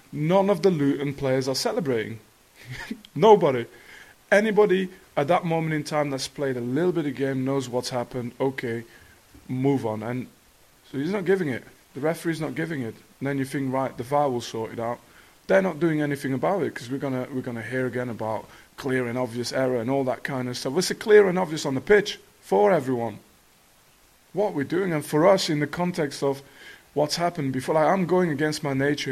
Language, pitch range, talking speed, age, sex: English, 130-165 Hz, 210 wpm, 20-39, male